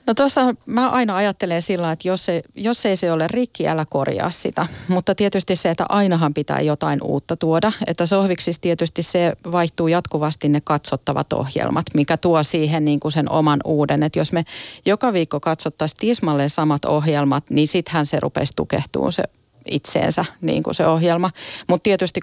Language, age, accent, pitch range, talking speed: Finnish, 40-59, native, 155-180 Hz, 175 wpm